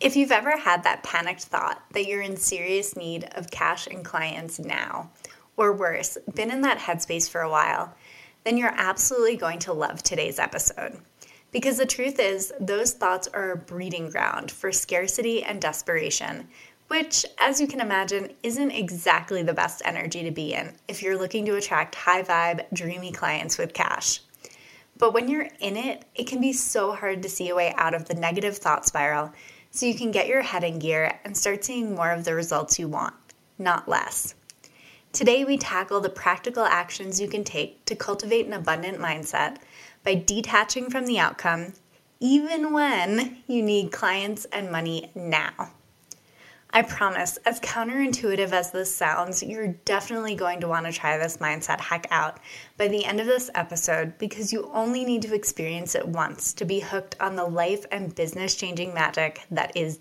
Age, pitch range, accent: 20-39, 170-230 Hz, American